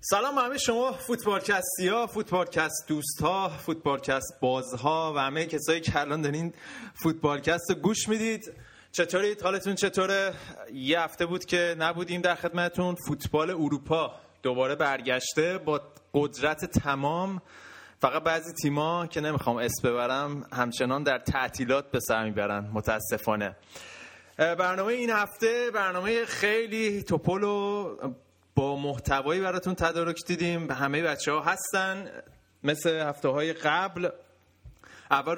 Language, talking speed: Persian, 120 wpm